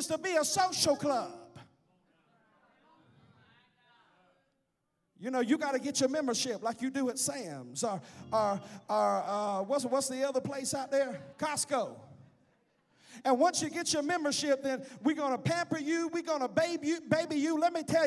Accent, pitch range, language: American, 255-355 Hz, English